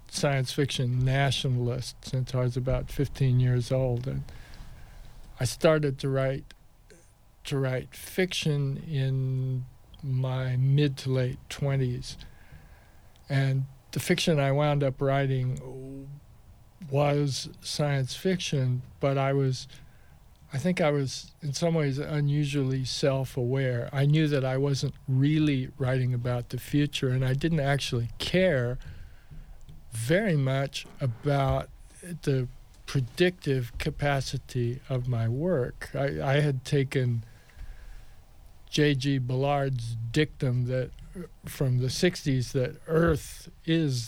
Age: 50-69